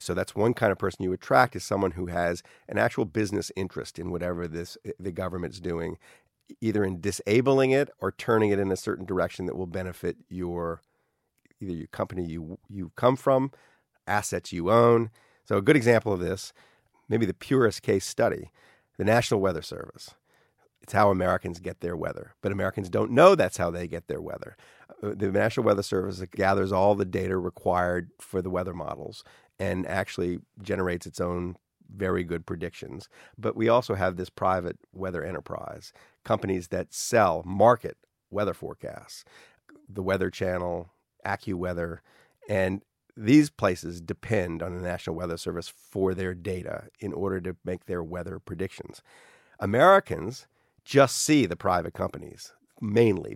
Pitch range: 90-105 Hz